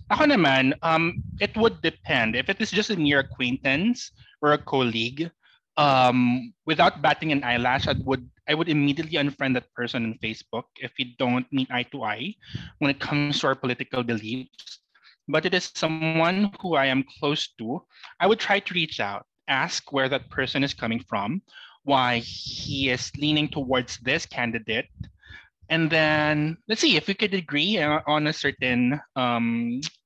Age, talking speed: 20-39, 175 wpm